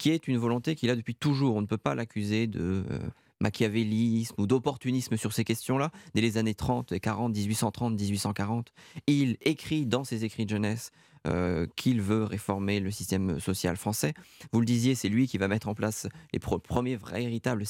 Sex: male